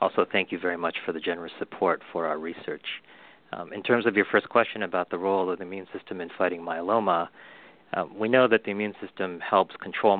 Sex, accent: male, American